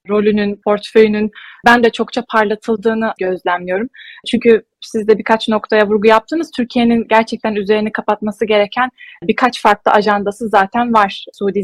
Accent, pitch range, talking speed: native, 200-230 Hz, 125 wpm